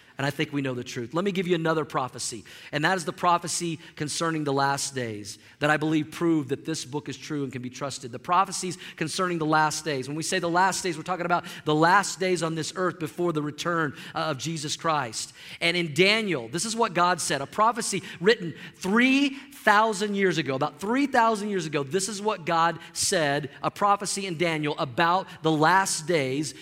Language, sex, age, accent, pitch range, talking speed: English, male, 40-59, American, 160-210 Hz, 215 wpm